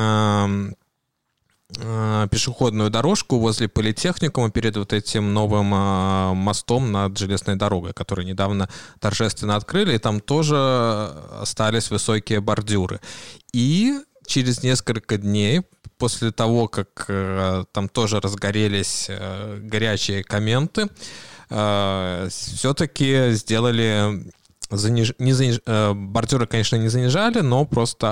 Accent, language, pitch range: native, Russian, 100-125 Hz